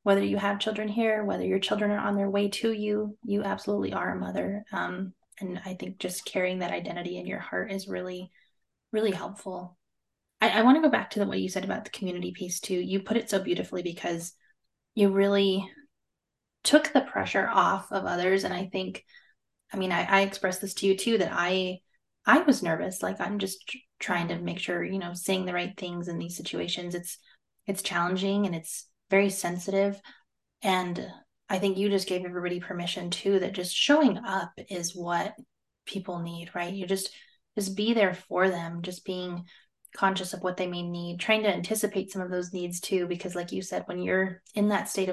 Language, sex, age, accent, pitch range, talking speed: English, female, 20-39, American, 180-210 Hz, 205 wpm